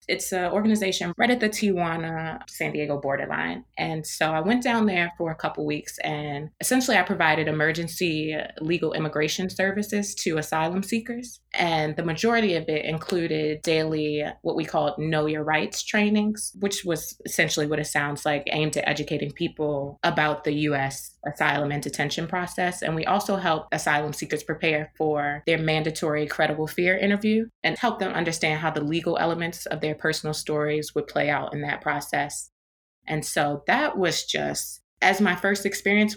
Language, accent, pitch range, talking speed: English, American, 150-185 Hz, 170 wpm